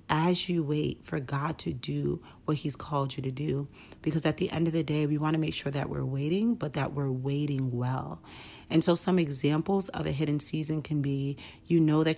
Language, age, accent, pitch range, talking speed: English, 40-59, American, 140-155 Hz, 220 wpm